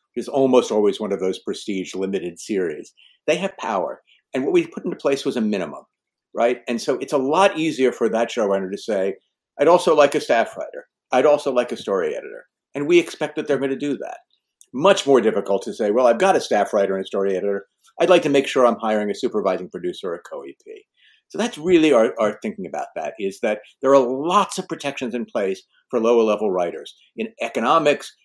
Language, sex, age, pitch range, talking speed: English, male, 50-69, 110-155 Hz, 225 wpm